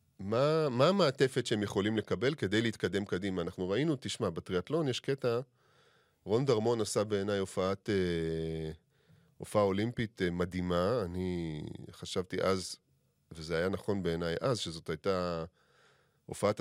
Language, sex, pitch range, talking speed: Hebrew, male, 90-120 Hz, 130 wpm